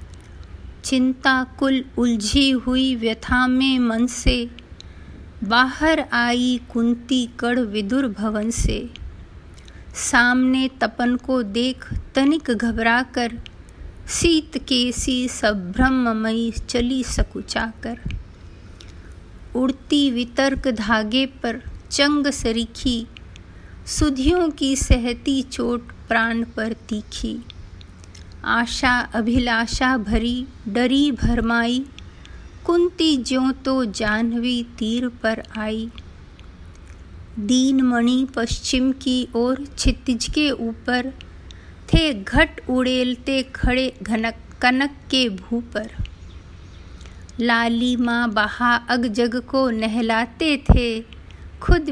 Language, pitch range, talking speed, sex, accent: Hindi, 210-260 Hz, 90 wpm, female, native